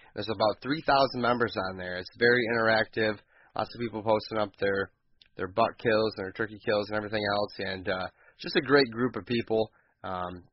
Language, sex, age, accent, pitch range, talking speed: English, male, 20-39, American, 105-135 Hz, 195 wpm